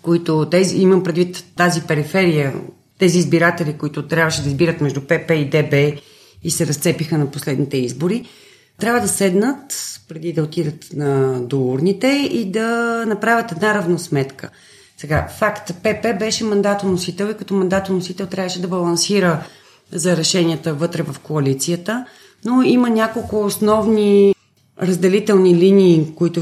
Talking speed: 130 wpm